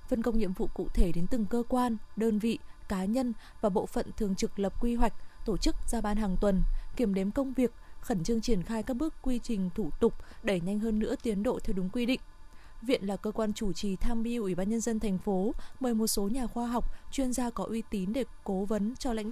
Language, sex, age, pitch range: Vietnamese, female, 20-39, 200-245 Hz